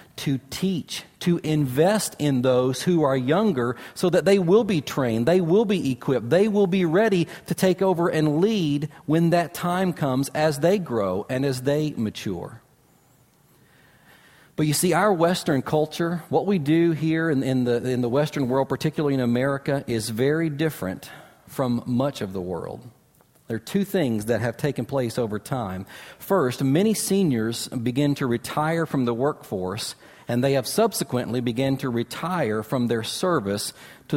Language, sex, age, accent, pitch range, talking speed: English, male, 40-59, American, 125-160 Hz, 170 wpm